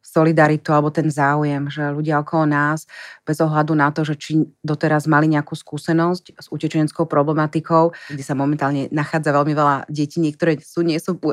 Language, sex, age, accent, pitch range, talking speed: Czech, female, 30-49, native, 150-170 Hz, 170 wpm